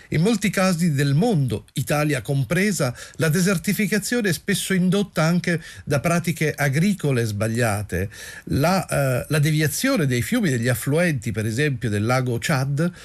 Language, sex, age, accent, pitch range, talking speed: Italian, male, 40-59, native, 120-160 Hz, 140 wpm